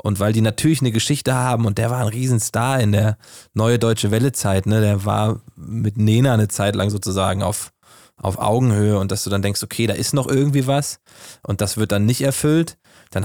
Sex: male